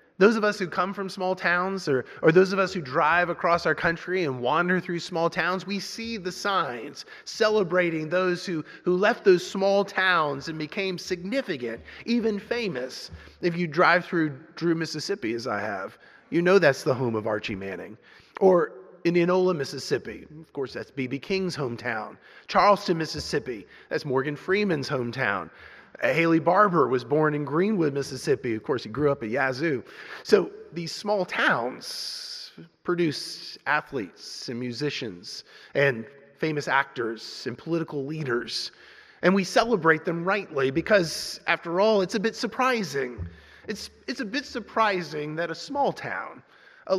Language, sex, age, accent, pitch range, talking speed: English, male, 30-49, American, 145-195 Hz, 155 wpm